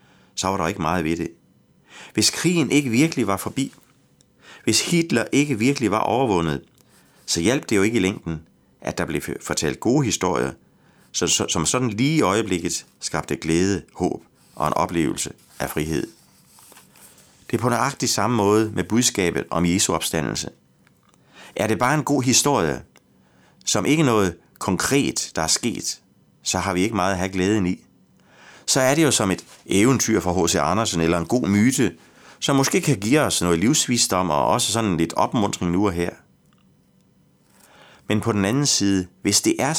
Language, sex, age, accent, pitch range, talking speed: Danish, male, 30-49, native, 85-125 Hz, 170 wpm